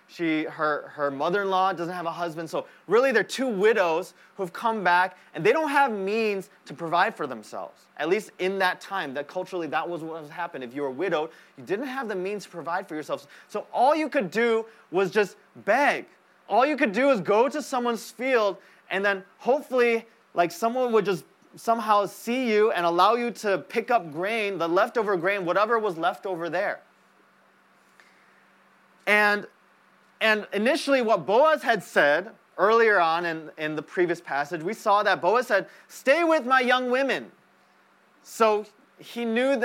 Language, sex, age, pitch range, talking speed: English, male, 20-39, 170-225 Hz, 180 wpm